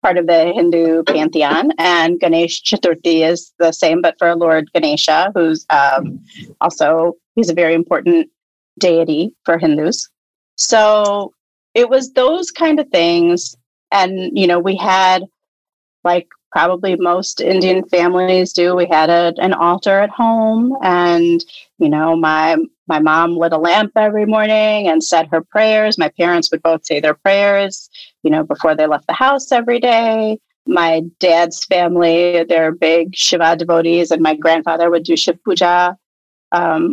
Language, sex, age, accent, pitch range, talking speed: English, female, 30-49, American, 165-200 Hz, 155 wpm